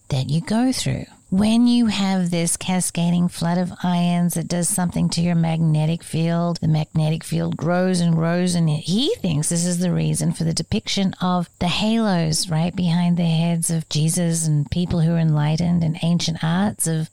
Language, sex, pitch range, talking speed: English, female, 150-180 Hz, 185 wpm